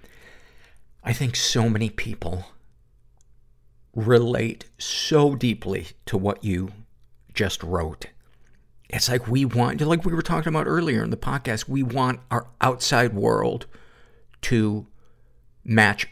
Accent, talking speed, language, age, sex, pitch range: American, 125 wpm, English, 50-69, male, 105-130 Hz